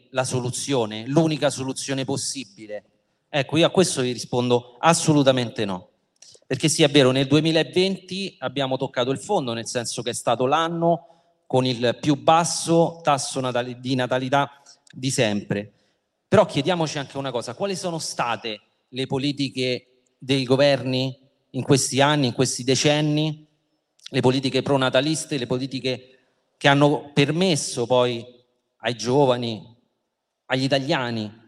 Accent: native